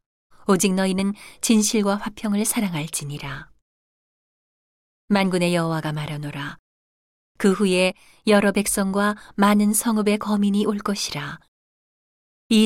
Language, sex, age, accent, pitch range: Korean, female, 40-59, native, 165-205 Hz